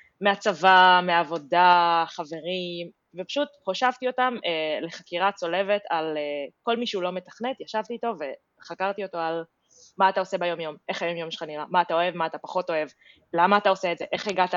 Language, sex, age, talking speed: Hebrew, female, 20-39, 180 wpm